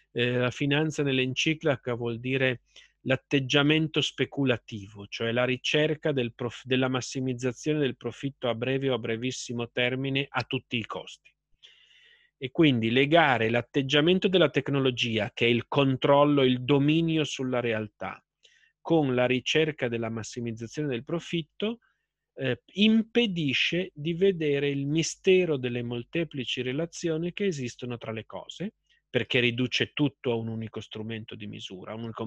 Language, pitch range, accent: Italian, 120-155 Hz, native